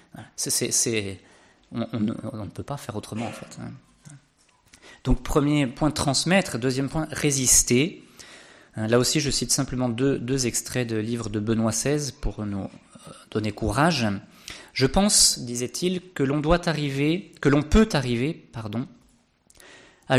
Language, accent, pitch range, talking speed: French, French, 120-150 Hz, 150 wpm